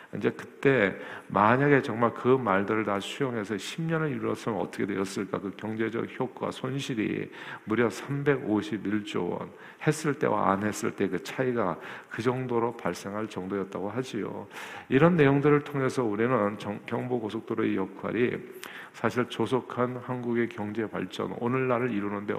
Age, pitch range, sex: 50-69, 105-130 Hz, male